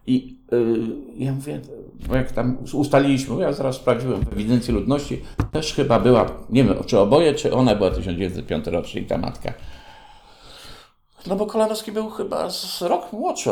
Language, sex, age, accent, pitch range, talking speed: Polish, male, 50-69, native, 95-125 Hz, 160 wpm